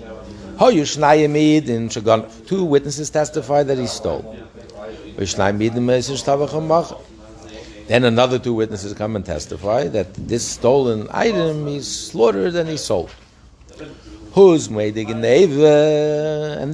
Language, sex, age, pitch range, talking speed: English, male, 60-79, 110-135 Hz, 85 wpm